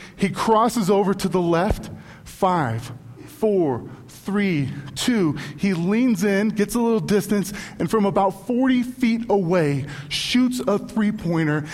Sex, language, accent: male, English, American